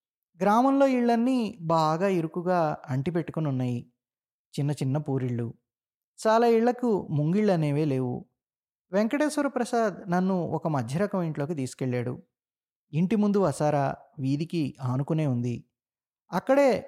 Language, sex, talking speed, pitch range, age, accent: Telugu, male, 105 wpm, 135-190 Hz, 20-39, native